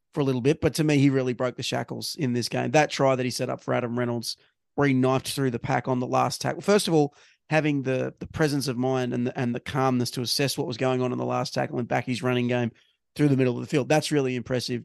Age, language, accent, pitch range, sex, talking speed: 30-49, English, Australian, 125-140 Hz, male, 290 wpm